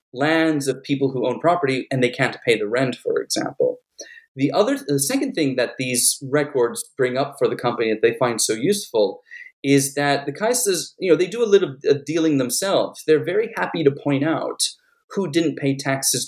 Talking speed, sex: 200 wpm, male